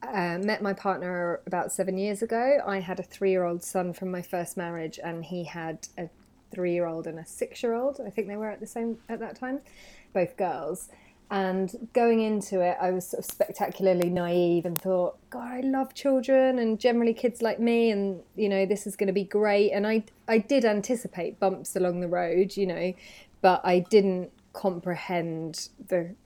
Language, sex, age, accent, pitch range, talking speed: English, female, 30-49, British, 175-225 Hz, 205 wpm